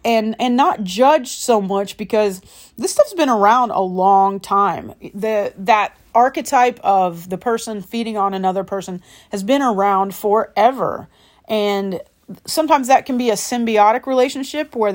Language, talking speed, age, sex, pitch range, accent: English, 150 wpm, 30-49, female, 195-240 Hz, American